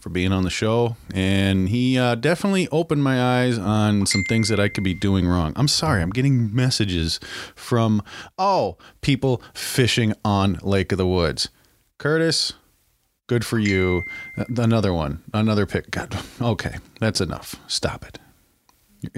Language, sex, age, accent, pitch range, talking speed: English, male, 40-59, American, 95-125 Hz, 155 wpm